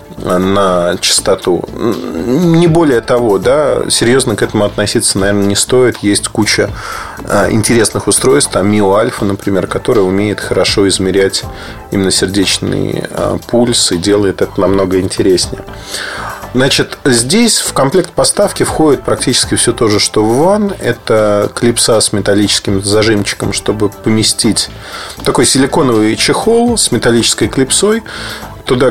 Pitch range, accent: 100-130 Hz, native